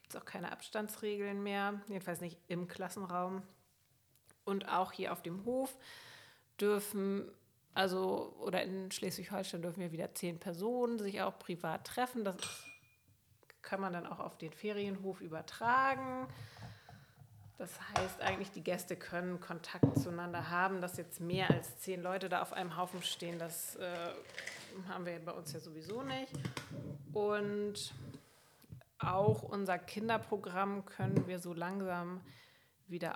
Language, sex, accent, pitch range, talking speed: German, female, German, 170-200 Hz, 135 wpm